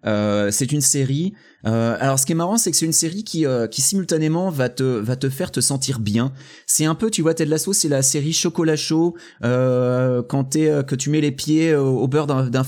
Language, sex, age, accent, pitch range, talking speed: French, male, 30-49, French, 120-155 Hz, 255 wpm